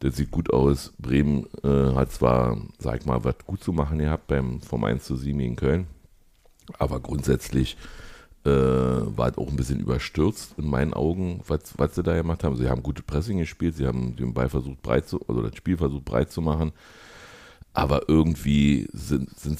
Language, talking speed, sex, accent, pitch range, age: German, 200 wpm, male, German, 70-80 Hz, 60-79